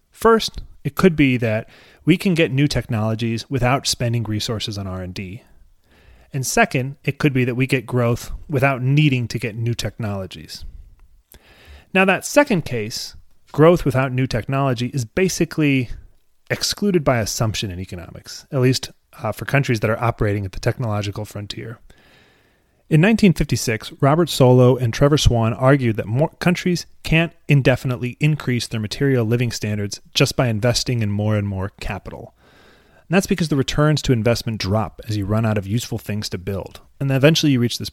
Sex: male